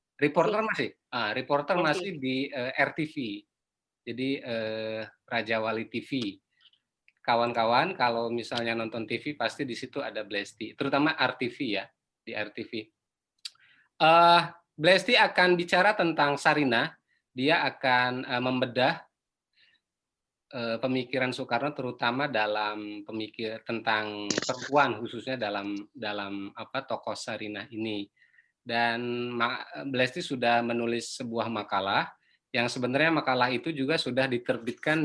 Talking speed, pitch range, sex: 115 wpm, 115-140 Hz, male